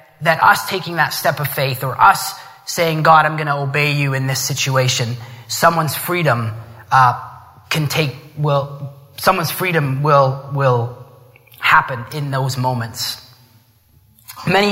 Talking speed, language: 140 wpm, English